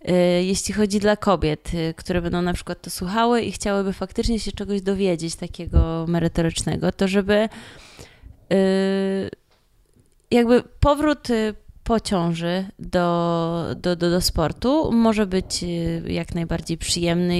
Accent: native